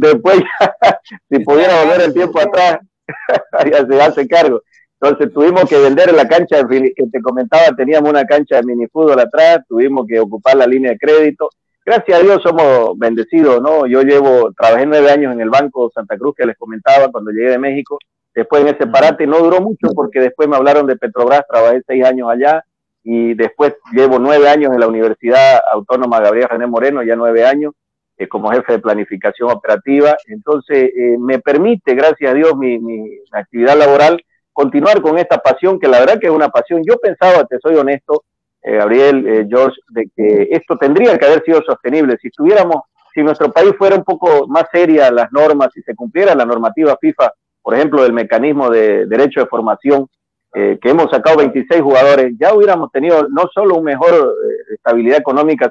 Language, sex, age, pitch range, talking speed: Spanish, male, 50-69, 130-170 Hz, 190 wpm